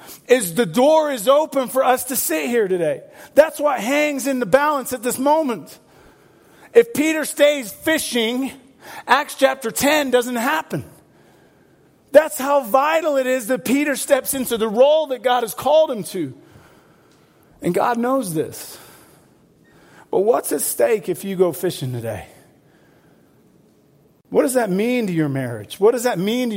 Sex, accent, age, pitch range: male, American, 40-59, 150-255 Hz